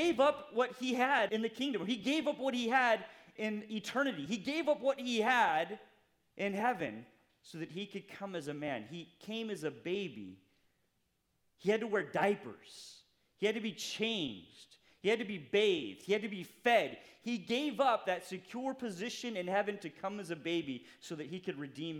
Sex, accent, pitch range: male, American, 190-270 Hz